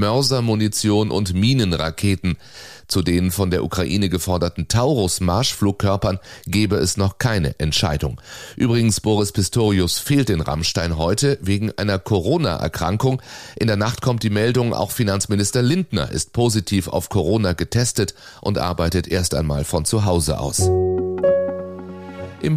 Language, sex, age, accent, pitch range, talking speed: German, male, 30-49, German, 95-120 Hz, 130 wpm